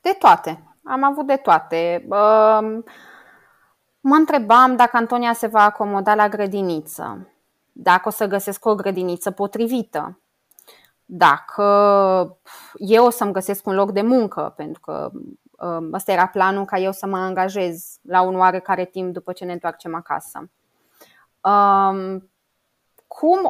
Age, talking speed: 20-39, 130 wpm